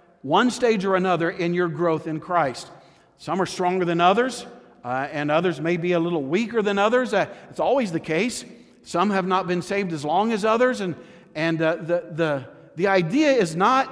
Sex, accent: male, American